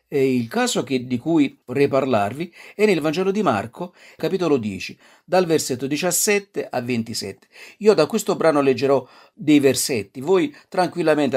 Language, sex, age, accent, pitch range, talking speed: Italian, male, 50-69, native, 130-195 Hz, 150 wpm